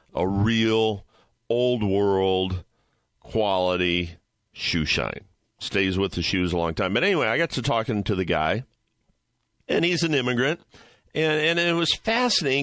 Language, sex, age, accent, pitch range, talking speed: English, male, 50-69, American, 100-135 Hz, 150 wpm